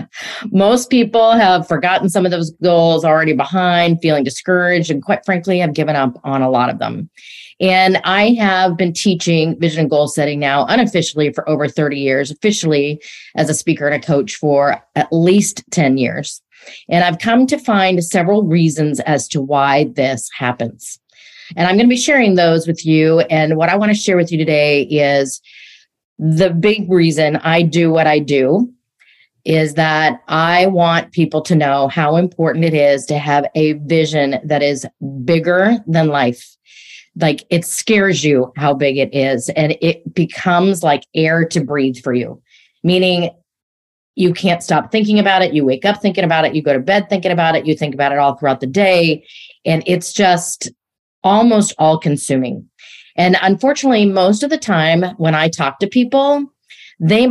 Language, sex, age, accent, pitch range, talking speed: English, female, 40-59, American, 150-190 Hz, 180 wpm